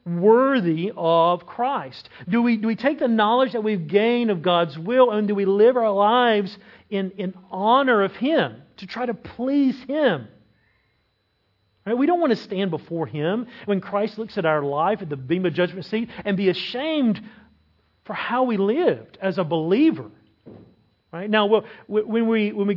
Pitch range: 165-225 Hz